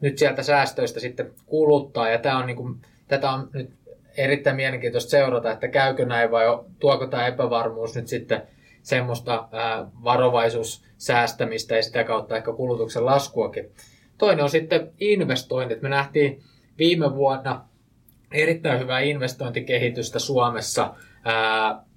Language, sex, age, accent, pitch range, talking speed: Finnish, male, 20-39, native, 120-150 Hz, 130 wpm